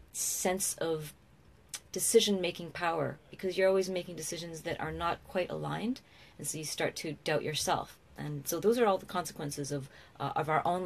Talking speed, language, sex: 180 wpm, English, female